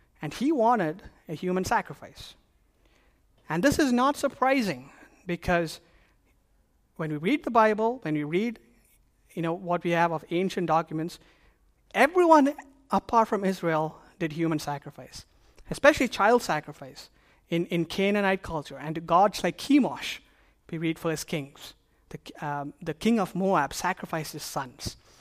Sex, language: male, English